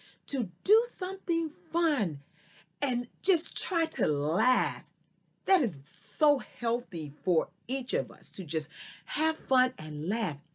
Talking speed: 130 wpm